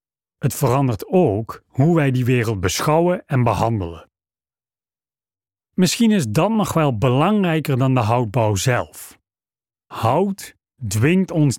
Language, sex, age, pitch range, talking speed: Dutch, male, 40-59, 105-145 Hz, 120 wpm